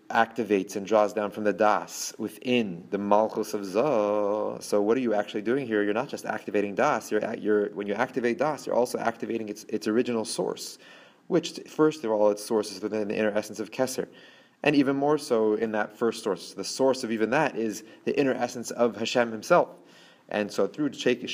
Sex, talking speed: male, 210 wpm